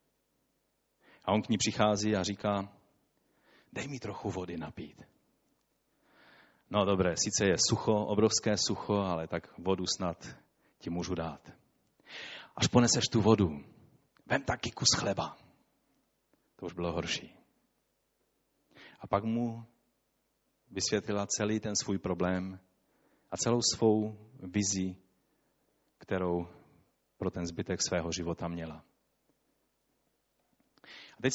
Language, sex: Czech, male